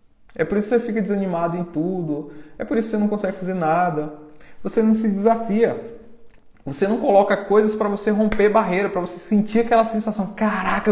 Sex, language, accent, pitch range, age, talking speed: male, Portuguese, Brazilian, 145-215 Hz, 20-39, 200 wpm